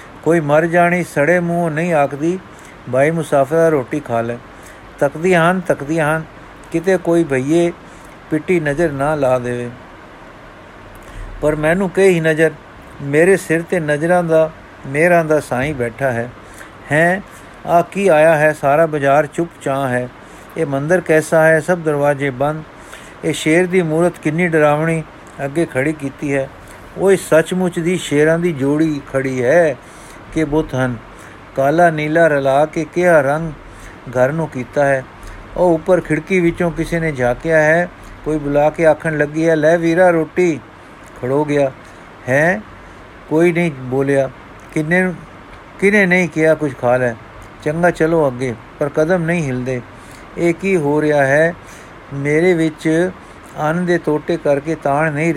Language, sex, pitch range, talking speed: Punjabi, male, 135-170 Hz, 140 wpm